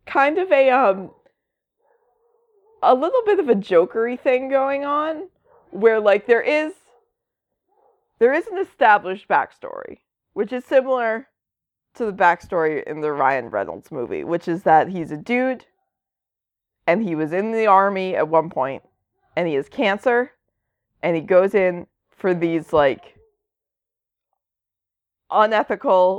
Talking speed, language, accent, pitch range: 135 wpm, English, American, 170-260 Hz